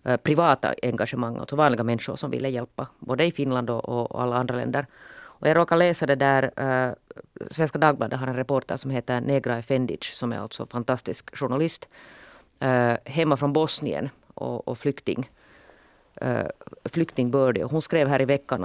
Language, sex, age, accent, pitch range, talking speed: Swedish, female, 30-49, Finnish, 120-145 Hz, 175 wpm